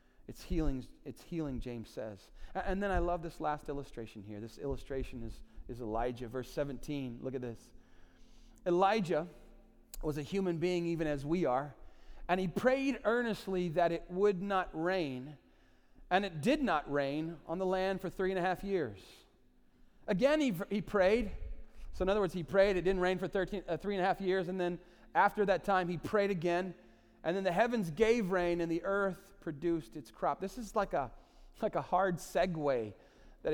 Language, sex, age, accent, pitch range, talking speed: English, male, 40-59, American, 145-195 Hz, 185 wpm